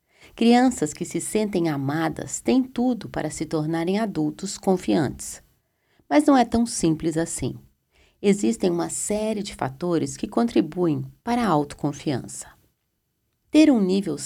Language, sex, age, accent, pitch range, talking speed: Portuguese, female, 40-59, Brazilian, 150-210 Hz, 130 wpm